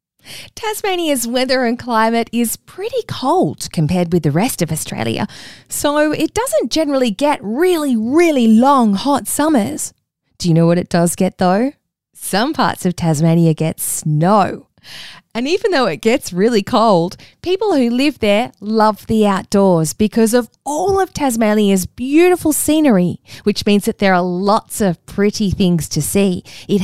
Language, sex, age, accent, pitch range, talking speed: English, female, 20-39, Australian, 180-275 Hz, 155 wpm